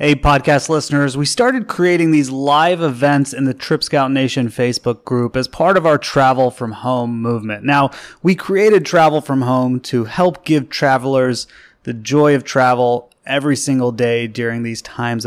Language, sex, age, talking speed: English, male, 30-49, 175 wpm